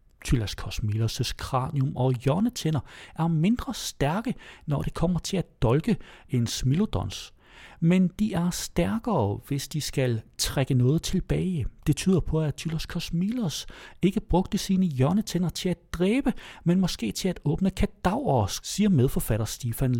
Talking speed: 145 wpm